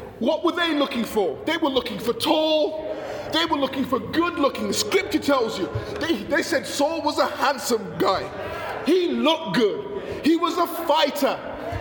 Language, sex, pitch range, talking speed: English, male, 280-350 Hz, 175 wpm